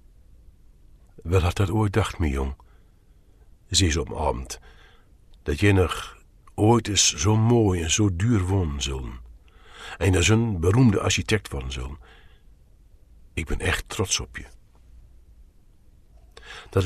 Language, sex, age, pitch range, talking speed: Dutch, male, 50-69, 70-100 Hz, 140 wpm